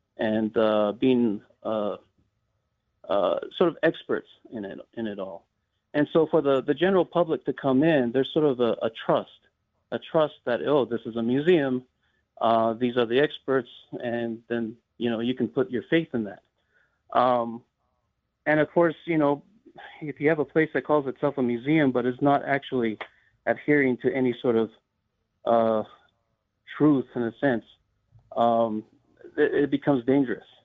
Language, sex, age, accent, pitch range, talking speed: English, male, 40-59, American, 115-145 Hz, 170 wpm